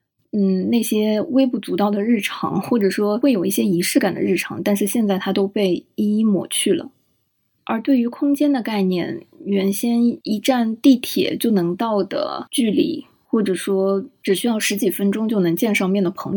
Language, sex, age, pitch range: Chinese, female, 20-39, 190-235 Hz